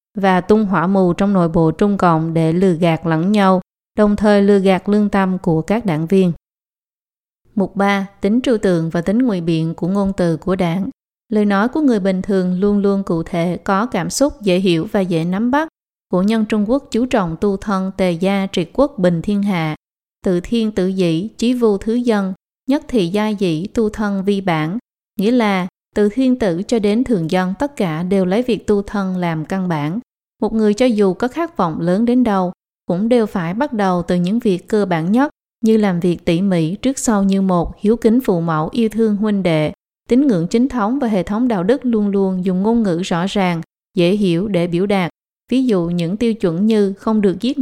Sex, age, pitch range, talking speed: female, 20-39, 180-220 Hz, 220 wpm